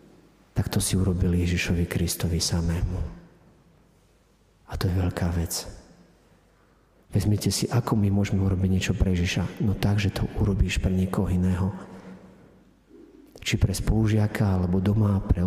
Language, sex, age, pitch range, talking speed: Slovak, male, 50-69, 95-115 Hz, 130 wpm